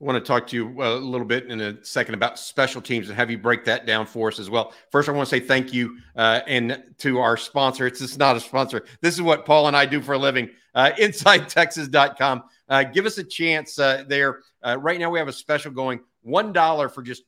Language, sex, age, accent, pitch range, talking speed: English, male, 50-69, American, 125-160 Hz, 255 wpm